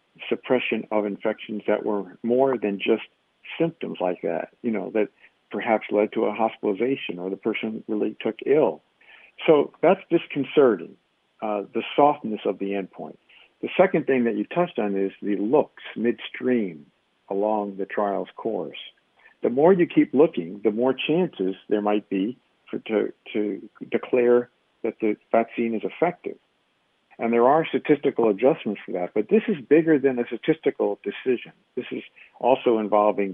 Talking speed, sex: 160 wpm, male